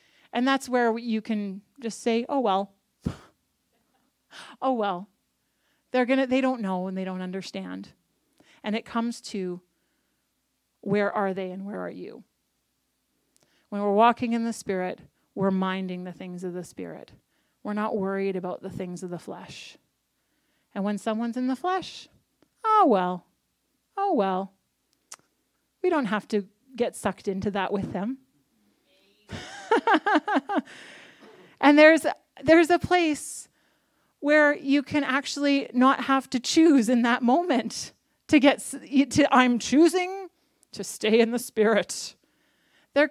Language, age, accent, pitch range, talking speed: English, 30-49, American, 205-295 Hz, 135 wpm